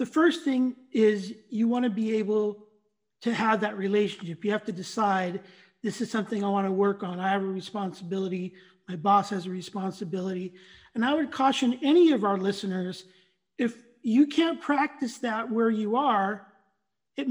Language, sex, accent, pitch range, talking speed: English, male, American, 205-245 Hz, 175 wpm